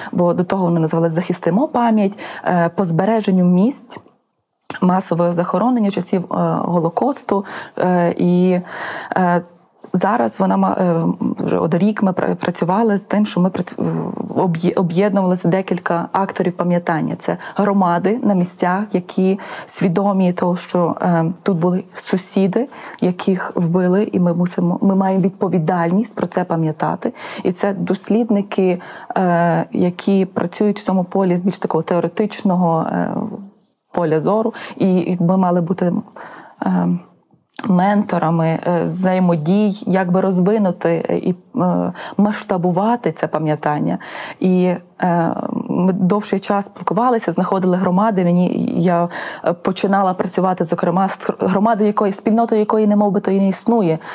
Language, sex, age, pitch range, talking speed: Ukrainian, female, 20-39, 175-205 Hz, 110 wpm